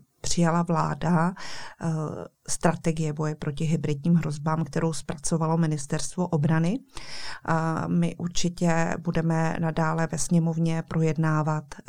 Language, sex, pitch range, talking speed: Czech, female, 155-170 Hz, 90 wpm